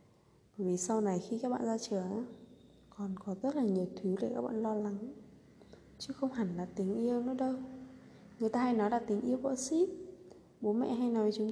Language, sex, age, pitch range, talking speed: Vietnamese, female, 20-39, 180-245 Hz, 220 wpm